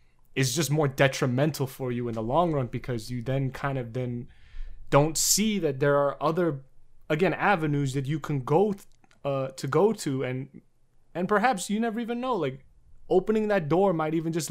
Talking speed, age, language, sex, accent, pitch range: 195 wpm, 20-39, English, male, American, 120-155 Hz